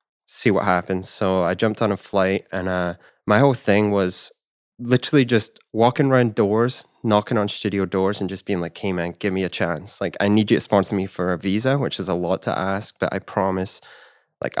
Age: 20-39